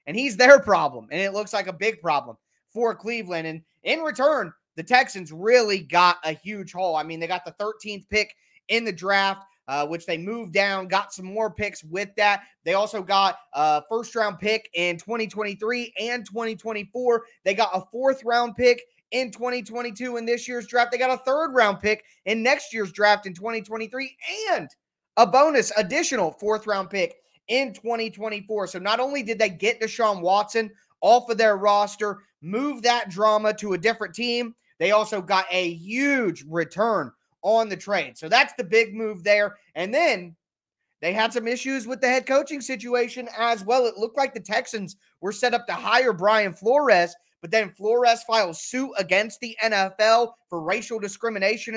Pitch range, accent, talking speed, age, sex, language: 195-240 Hz, American, 185 wpm, 20-39, male, English